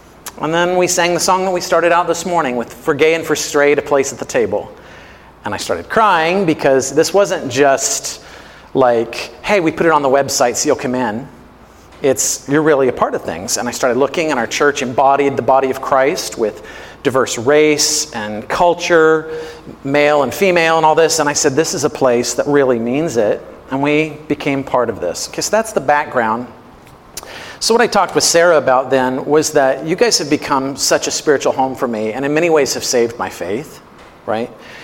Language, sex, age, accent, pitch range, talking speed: English, male, 40-59, American, 135-165 Hz, 210 wpm